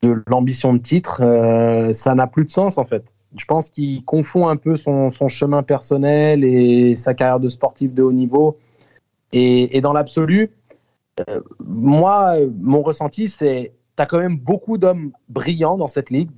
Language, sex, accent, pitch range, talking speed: French, male, French, 130-180 Hz, 185 wpm